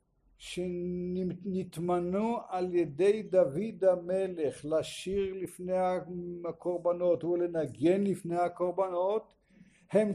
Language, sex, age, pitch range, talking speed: English, male, 60-79, 165-200 Hz, 70 wpm